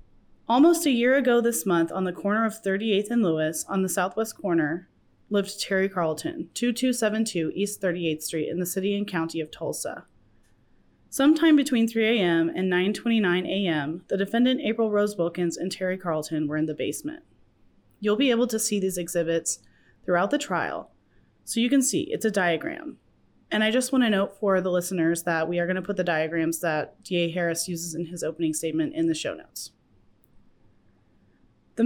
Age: 30-49